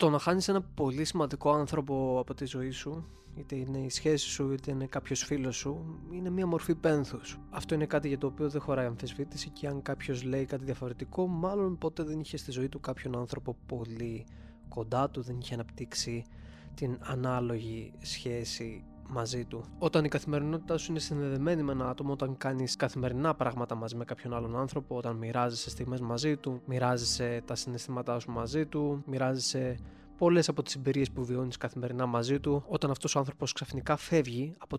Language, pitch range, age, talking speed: Greek, 120-150 Hz, 20-39, 185 wpm